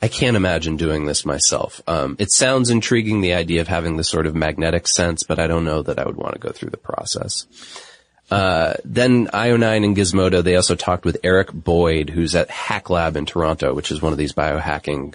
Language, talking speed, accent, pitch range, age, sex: English, 220 wpm, American, 85-110 Hz, 30-49, male